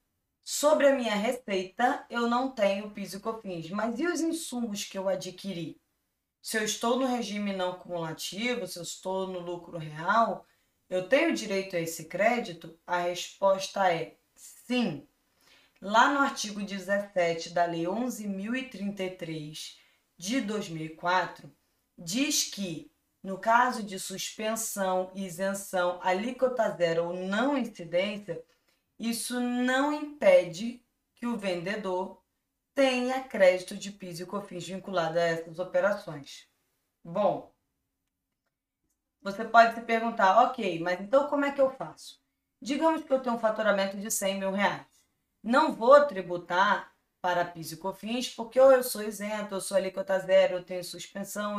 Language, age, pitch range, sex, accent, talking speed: Portuguese, 20-39, 180-240 Hz, female, Brazilian, 135 wpm